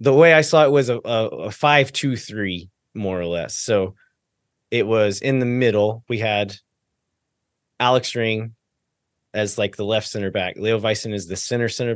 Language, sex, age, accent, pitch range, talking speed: English, male, 20-39, American, 100-125 Hz, 175 wpm